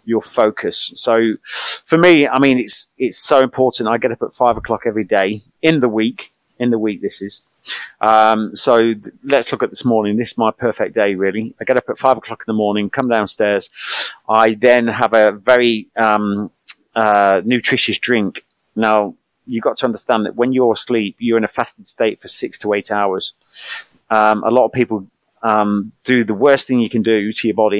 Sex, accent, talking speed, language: male, British, 205 wpm, English